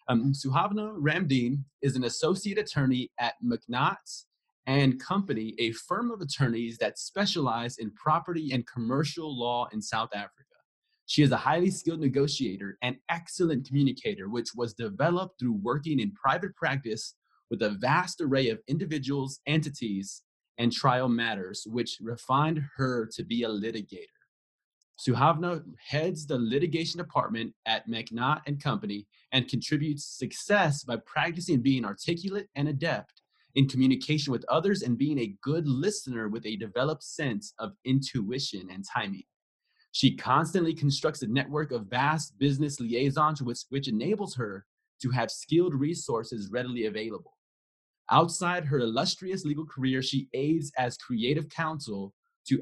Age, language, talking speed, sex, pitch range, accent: 30-49, English, 140 wpm, male, 120-165 Hz, American